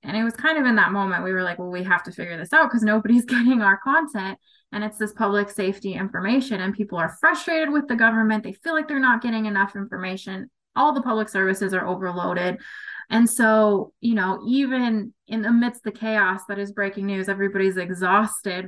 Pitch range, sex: 200-240 Hz, female